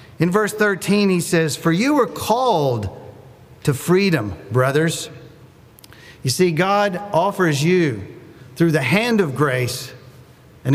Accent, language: American, English